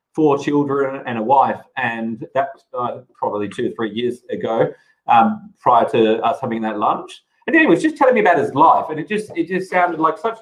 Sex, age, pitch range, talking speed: male, 30-49, 125-195 Hz, 225 wpm